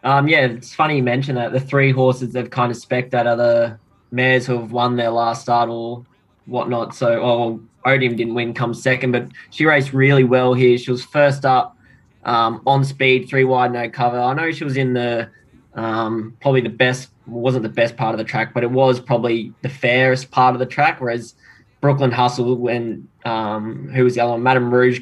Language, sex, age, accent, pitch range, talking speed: English, male, 10-29, Australian, 120-135 Hz, 215 wpm